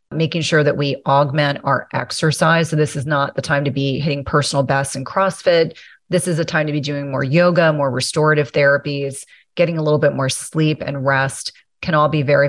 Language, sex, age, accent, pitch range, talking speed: English, female, 30-49, American, 140-165 Hz, 210 wpm